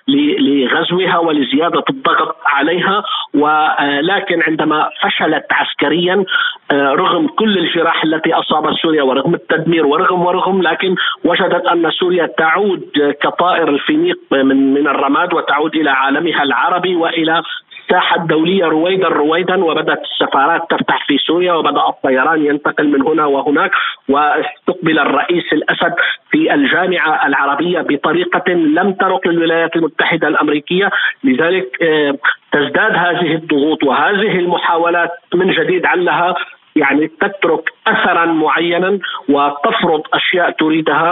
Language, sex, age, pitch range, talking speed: Arabic, male, 50-69, 155-200 Hz, 110 wpm